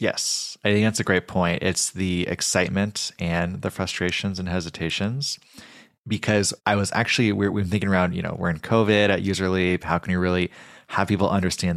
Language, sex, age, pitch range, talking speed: English, male, 20-39, 90-105 Hz, 190 wpm